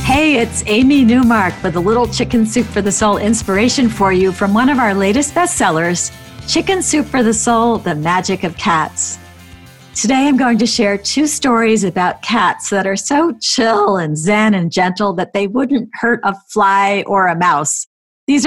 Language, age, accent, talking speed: English, 50-69, American, 185 wpm